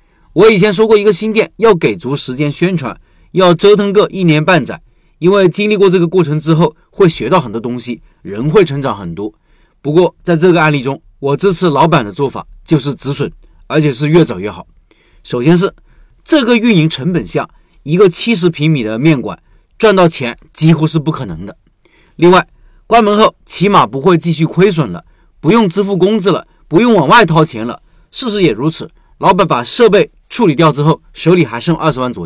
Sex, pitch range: male, 140-185 Hz